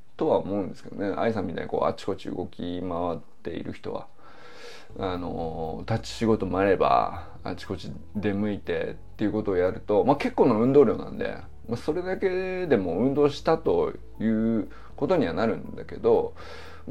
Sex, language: male, Japanese